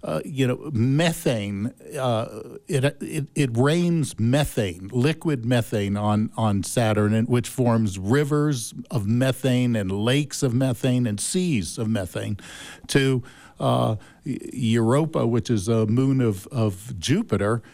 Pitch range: 115-145 Hz